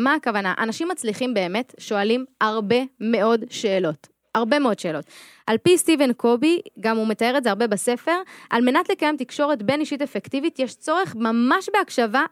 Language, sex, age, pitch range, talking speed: Hebrew, female, 20-39, 225-300 Hz, 165 wpm